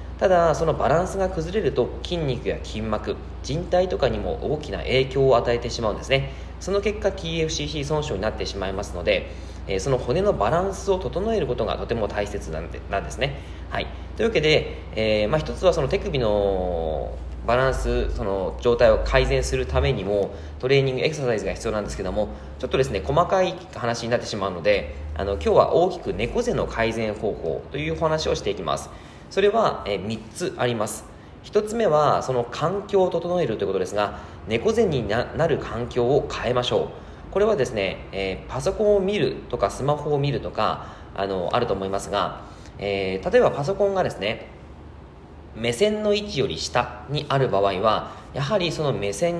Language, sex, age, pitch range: Japanese, male, 20-39, 100-160 Hz